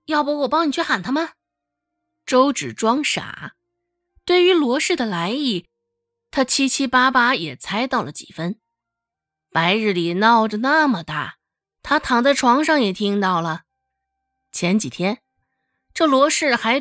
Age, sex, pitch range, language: 20-39, female, 195-295 Hz, Chinese